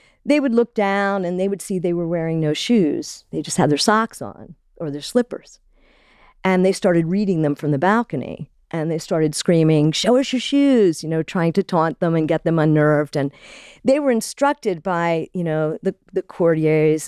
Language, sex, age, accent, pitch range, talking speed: English, female, 50-69, American, 160-200 Hz, 205 wpm